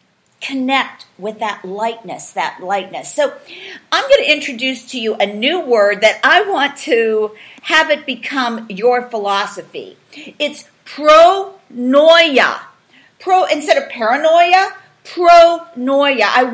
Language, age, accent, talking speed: English, 50-69, American, 120 wpm